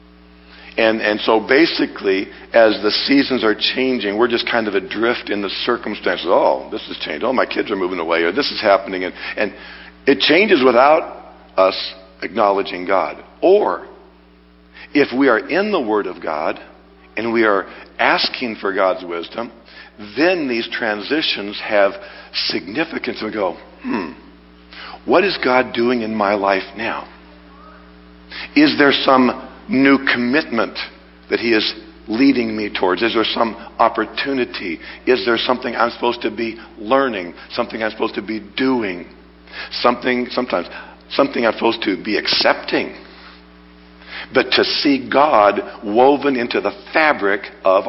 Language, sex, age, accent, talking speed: English, male, 60-79, American, 150 wpm